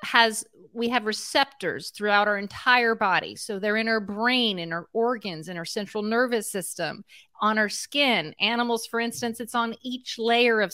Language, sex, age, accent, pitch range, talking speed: English, female, 40-59, American, 210-250 Hz, 180 wpm